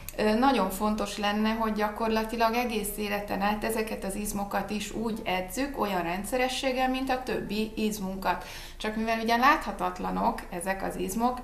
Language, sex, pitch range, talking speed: Hungarian, female, 185-230 Hz, 140 wpm